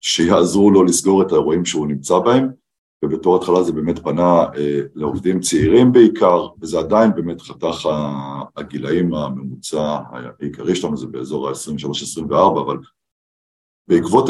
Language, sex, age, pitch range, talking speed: Hebrew, male, 50-69, 75-100 Hz, 125 wpm